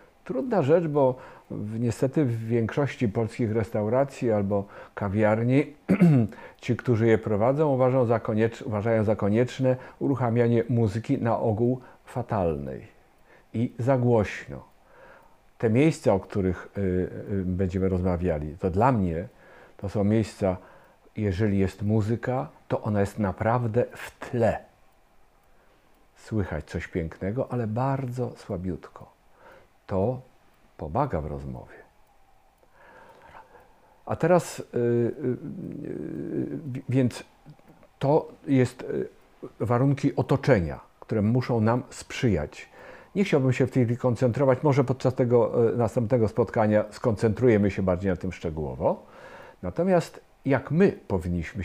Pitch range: 100-130 Hz